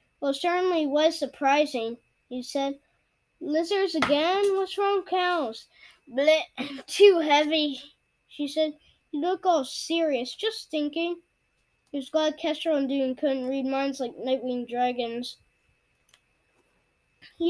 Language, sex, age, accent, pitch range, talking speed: English, female, 10-29, American, 260-315 Hz, 120 wpm